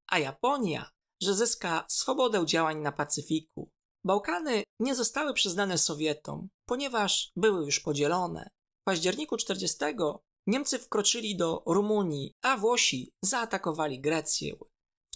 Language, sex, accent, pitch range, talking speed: Polish, male, native, 165-235 Hz, 115 wpm